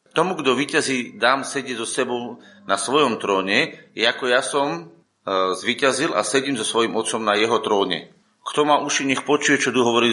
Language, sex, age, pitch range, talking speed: Slovak, male, 40-59, 115-140 Hz, 180 wpm